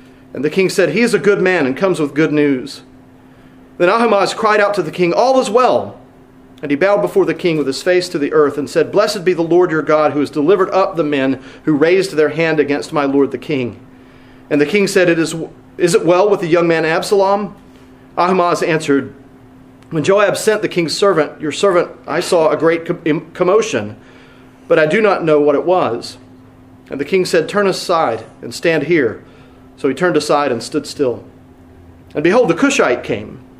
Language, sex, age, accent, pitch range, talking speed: English, male, 40-59, American, 140-185 Hz, 205 wpm